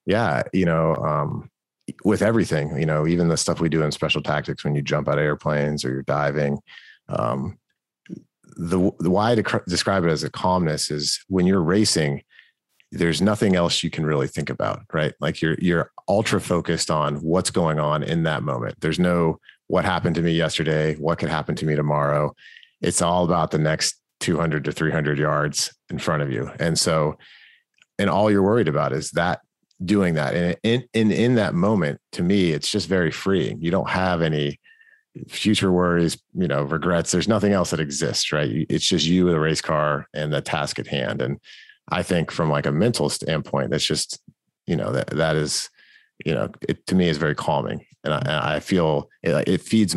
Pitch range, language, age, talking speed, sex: 75-90 Hz, English, 30-49, 200 wpm, male